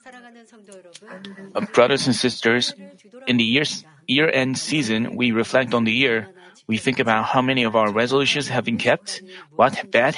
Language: Korean